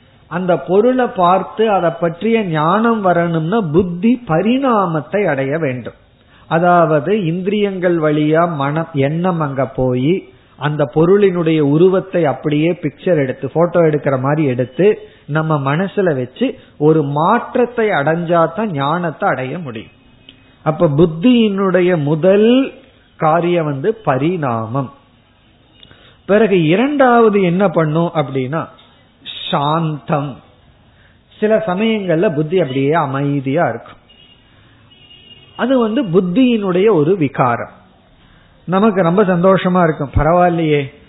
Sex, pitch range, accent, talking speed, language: male, 140-190 Hz, native, 90 wpm, Tamil